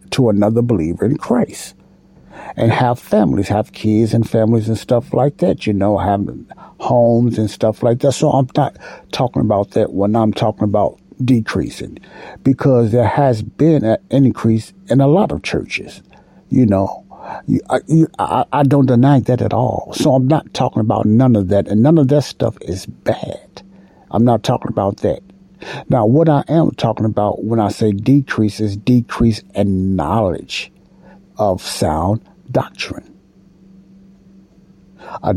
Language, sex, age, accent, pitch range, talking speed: English, male, 60-79, American, 110-160 Hz, 160 wpm